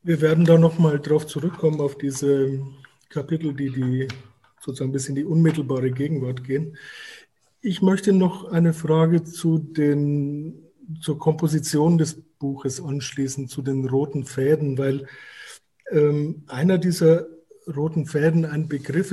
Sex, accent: male, German